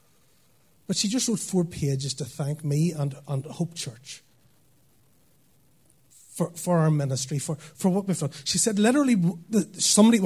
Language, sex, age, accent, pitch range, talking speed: English, male, 30-49, Irish, 145-205 Hz, 150 wpm